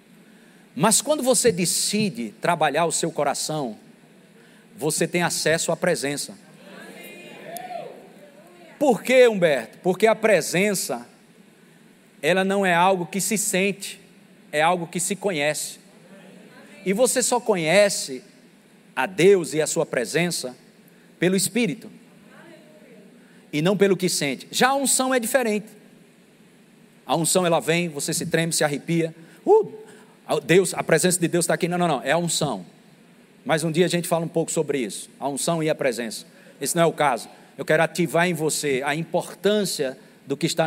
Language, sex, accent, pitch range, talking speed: Portuguese, male, Brazilian, 165-215 Hz, 155 wpm